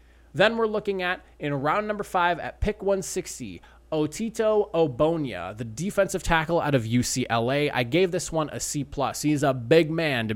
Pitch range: 130-160 Hz